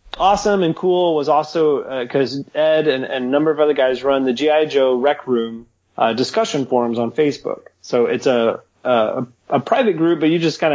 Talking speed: 205 wpm